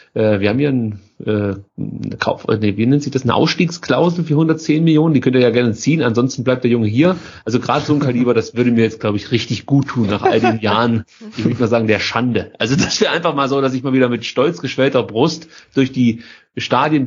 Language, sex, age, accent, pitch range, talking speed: German, male, 30-49, German, 110-140 Hz, 210 wpm